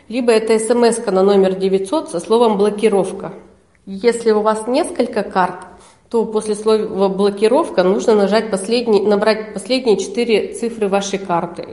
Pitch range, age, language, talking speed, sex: 185-215 Hz, 40-59, Russian, 130 wpm, female